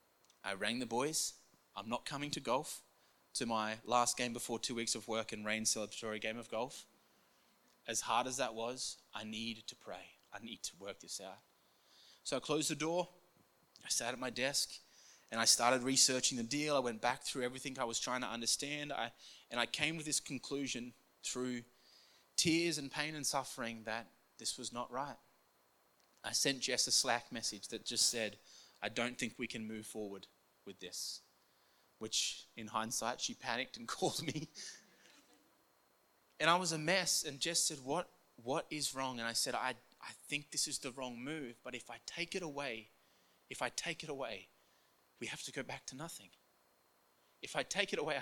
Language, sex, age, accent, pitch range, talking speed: English, male, 20-39, Australian, 115-150 Hz, 190 wpm